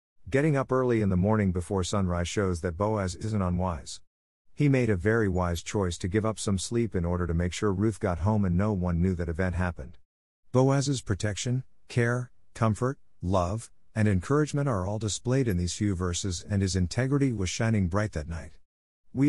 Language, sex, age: English, male, 50-69